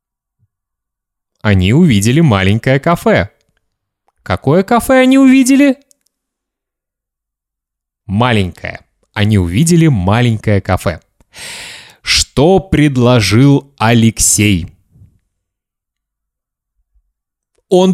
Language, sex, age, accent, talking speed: Russian, male, 30-49, native, 55 wpm